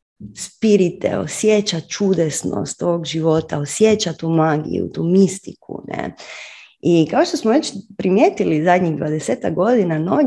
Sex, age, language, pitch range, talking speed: female, 30-49, Croatian, 160-205 Hz, 125 wpm